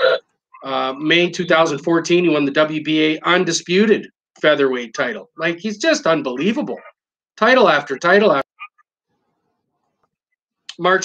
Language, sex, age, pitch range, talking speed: English, male, 30-49, 155-200 Hz, 105 wpm